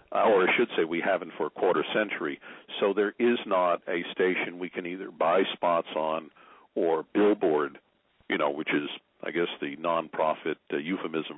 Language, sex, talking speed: English, male, 180 wpm